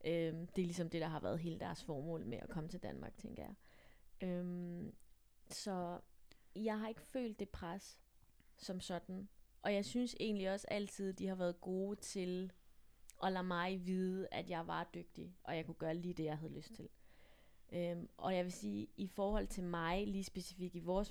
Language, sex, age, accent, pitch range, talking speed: Danish, female, 20-39, native, 170-195 Hz, 200 wpm